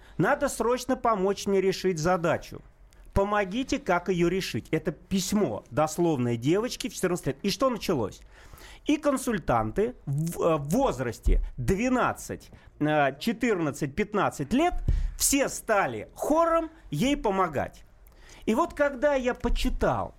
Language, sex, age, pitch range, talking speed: Russian, male, 40-59, 155-255 Hz, 115 wpm